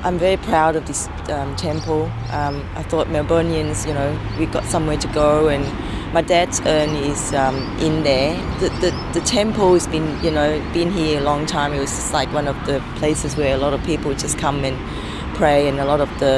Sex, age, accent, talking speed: female, 30-49, Australian, 225 wpm